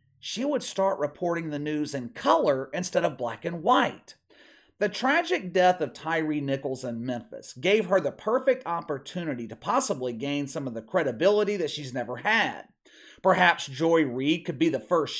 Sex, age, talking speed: male, 40-59, 175 wpm